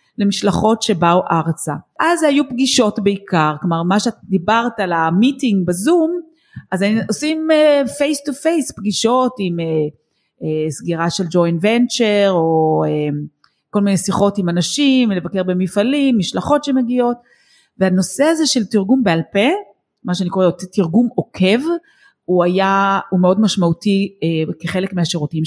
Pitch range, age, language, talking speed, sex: 180-260 Hz, 30-49, Hebrew, 140 wpm, female